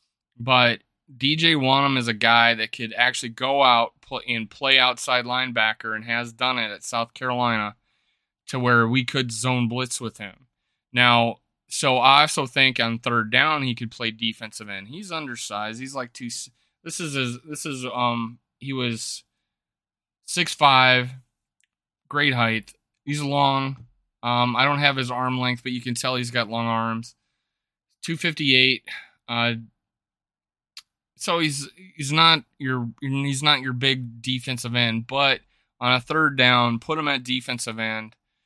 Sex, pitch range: male, 115-135 Hz